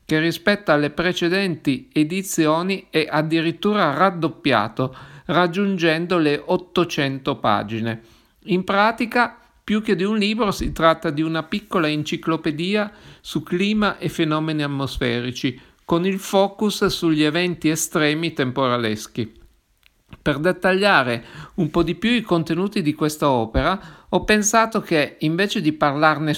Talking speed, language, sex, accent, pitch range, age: 125 wpm, Italian, male, native, 145-195 Hz, 50-69